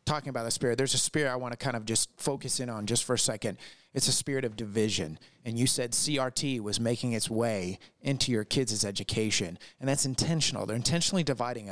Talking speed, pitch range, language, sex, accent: 220 wpm, 115-150 Hz, English, male, American